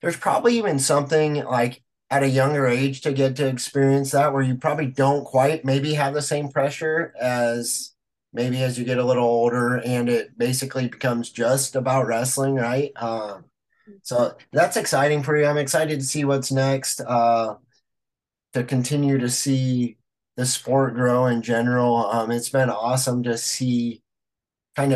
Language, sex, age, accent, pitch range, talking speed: English, male, 30-49, American, 120-140 Hz, 165 wpm